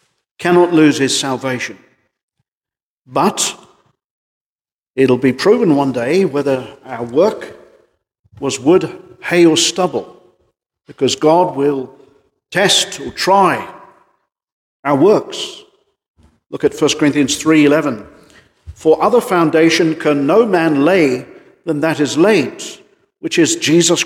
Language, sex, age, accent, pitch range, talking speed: English, male, 50-69, British, 145-185 Hz, 110 wpm